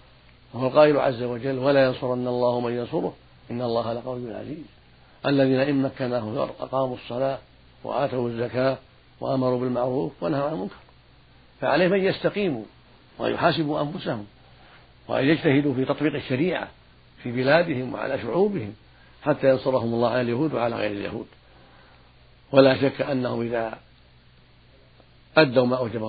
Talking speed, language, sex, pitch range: 120 wpm, Arabic, male, 115-135 Hz